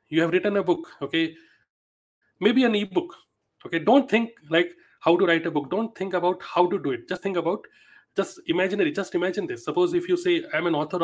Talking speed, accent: 215 wpm, native